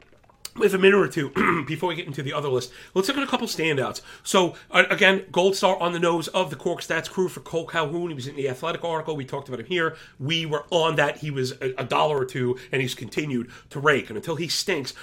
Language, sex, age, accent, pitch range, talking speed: English, male, 40-59, American, 130-175 Hz, 255 wpm